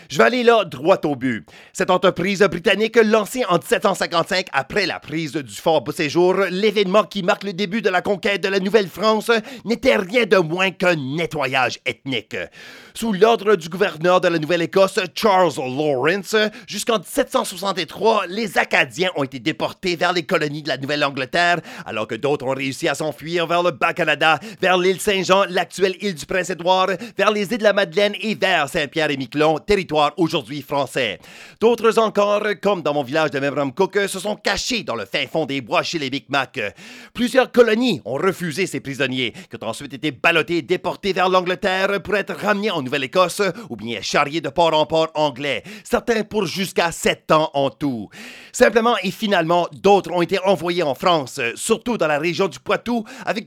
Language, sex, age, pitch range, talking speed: English, male, 30-49, 155-205 Hz, 180 wpm